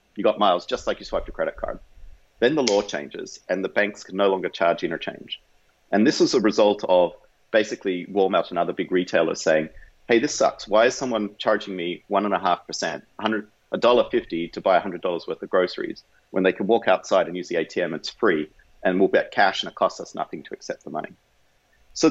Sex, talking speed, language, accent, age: male, 230 wpm, English, Australian, 40-59